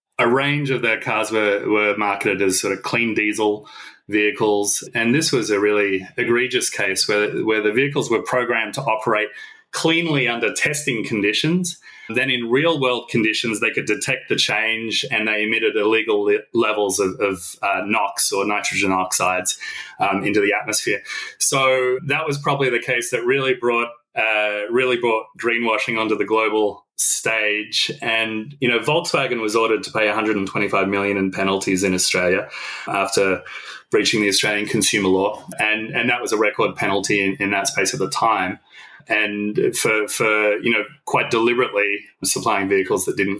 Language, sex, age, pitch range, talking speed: English, male, 30-49, 105-135 Hz, 165 wpm